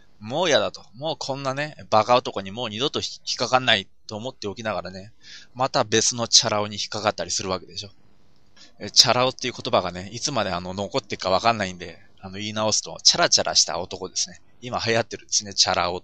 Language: Japanese